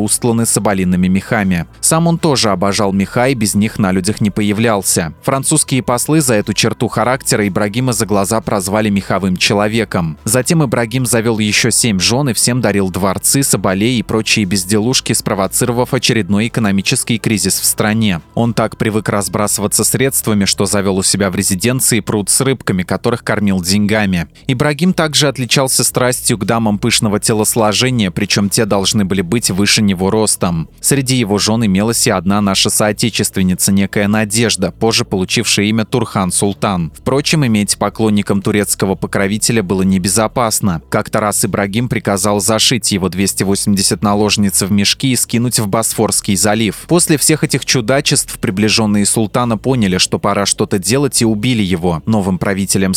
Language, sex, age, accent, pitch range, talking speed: Russian, male, 20-39, native, 100-120 Hz, 150 wpm